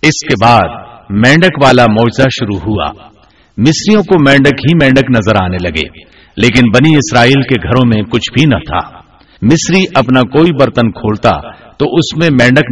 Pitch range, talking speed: 115-160 Hz, 170 wpm